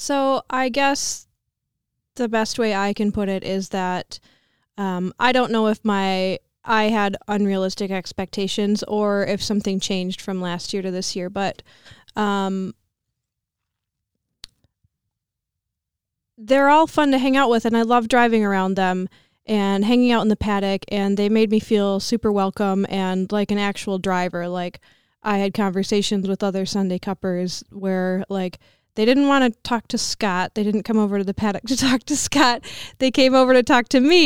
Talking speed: 175 wpm